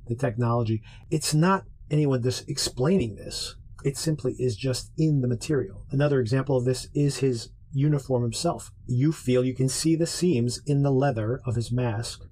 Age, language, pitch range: 40-59, English, 115-135 Hz